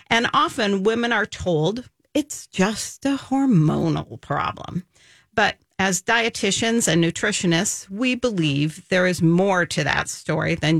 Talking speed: 135 wpm